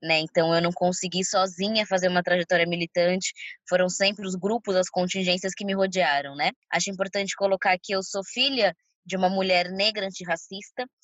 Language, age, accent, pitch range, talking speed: Portuguese, 20-39, Brazilian, 185-235 Hz, 175 wpm